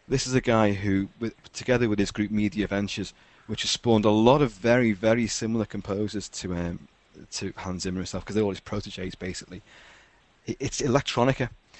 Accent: British